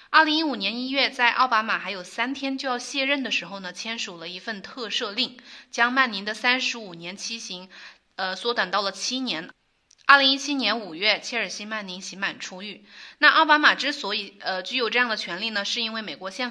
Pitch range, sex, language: 190-250 Hz, female, Chinese